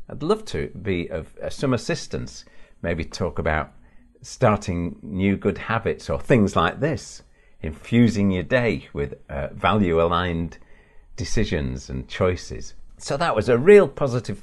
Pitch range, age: 80-110 Hz, 50-69